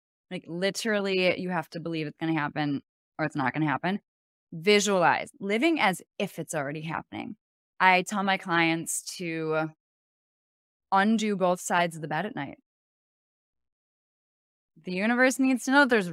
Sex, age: female, 10-29